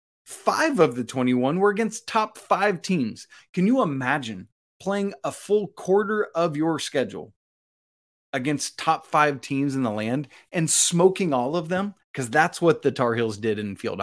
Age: 30-49